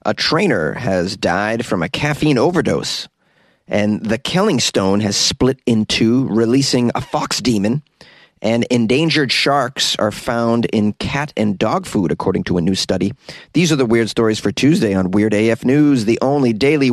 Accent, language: American, English